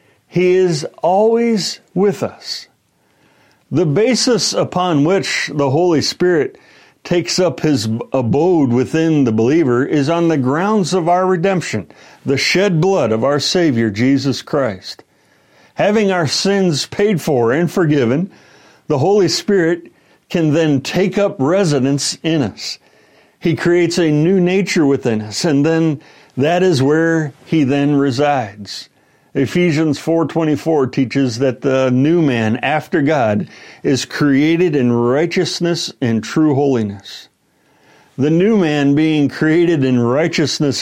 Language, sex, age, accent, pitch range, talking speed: English, male, 60-79, American, 130-175 Hz, 130 wpm